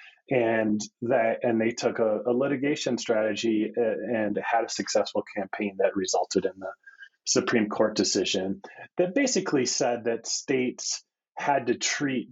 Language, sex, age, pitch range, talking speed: English, male, 30-49, 100-130 Hz, 140 wpm